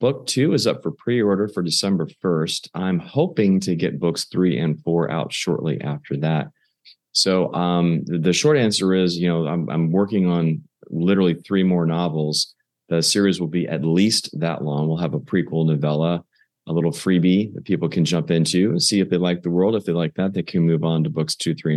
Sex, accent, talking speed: male, American, 210 wpm